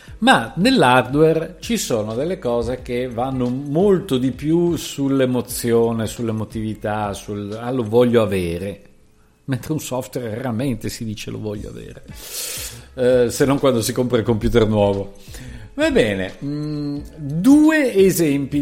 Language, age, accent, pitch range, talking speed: Italian, 50-69, native, 110-165 Hz, 130 wpm